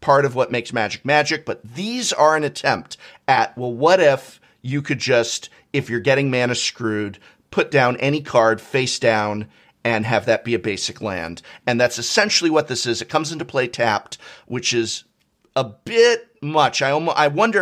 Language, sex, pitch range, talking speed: English, male, 115-150 Hz, 190 wpm